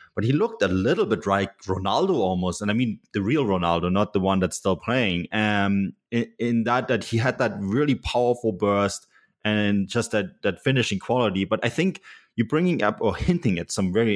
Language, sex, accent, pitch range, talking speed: English, male, German, 95-120 Hz, 210 wpm